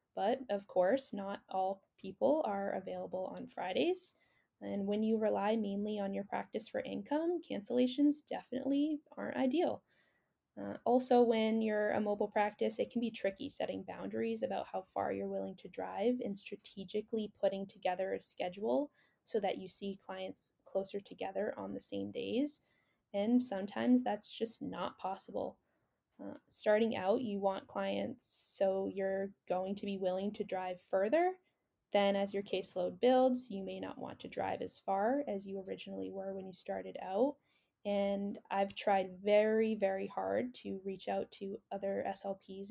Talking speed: 160 wpm